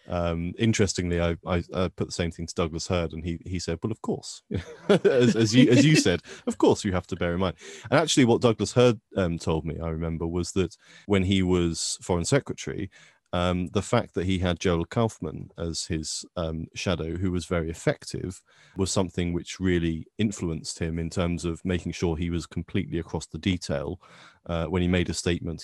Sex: male